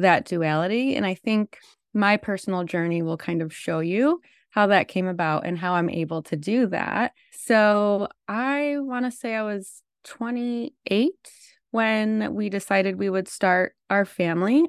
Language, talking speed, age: English, 165 wpm, 20-39